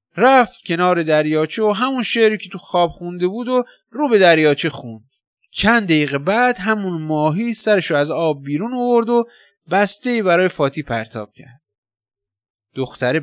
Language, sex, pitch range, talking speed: Persian, male, 135-220 Hz, 145 wpm